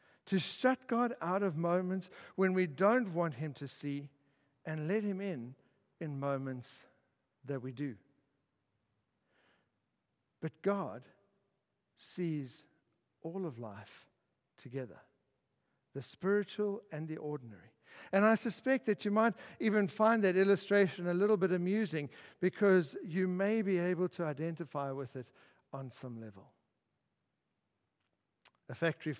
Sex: male